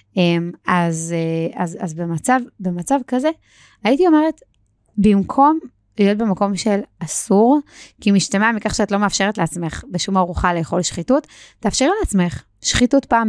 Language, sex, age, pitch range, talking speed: Hebrew, female, 20-39, 175-225 Hz, 130 wpm